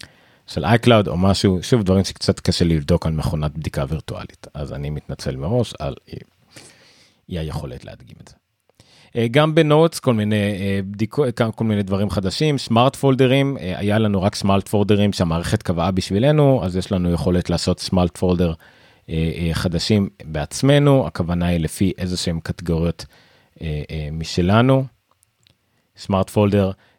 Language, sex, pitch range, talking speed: Hebrew, male, 90-125 Hz, 135 wpm